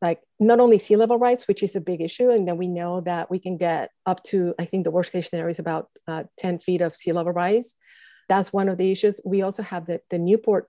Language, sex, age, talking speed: English, female, 50-69, 265 wpm